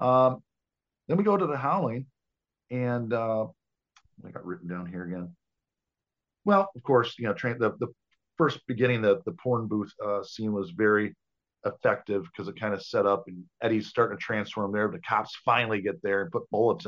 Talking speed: 200 wpm